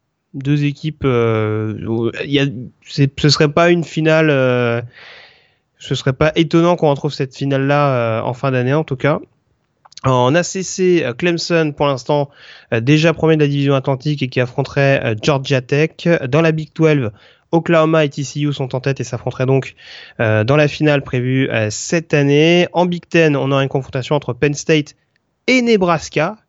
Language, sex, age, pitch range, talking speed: French, male, 30-49, 130-160 Hz, 180 wpm